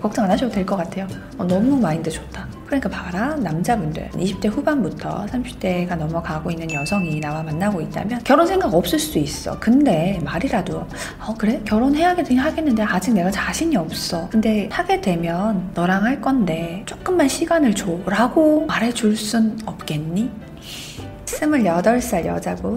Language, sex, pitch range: Korean, female, 190-250 Hz